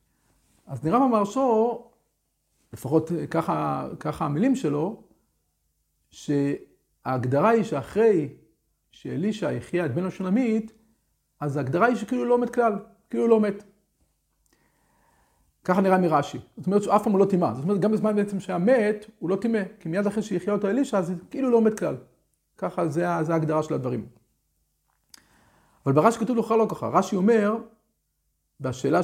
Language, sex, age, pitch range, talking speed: Hebrew, male, 50-69, 145-220 Hz, 75 wpm